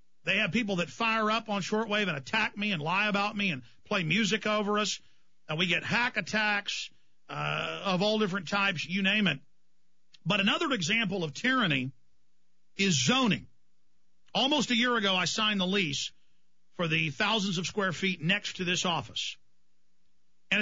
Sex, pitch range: male, 165-220 Hz